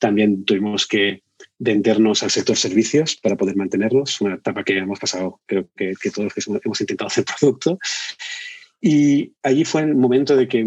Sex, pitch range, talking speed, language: male, 100-120 Hz, 175 wpm, Spanish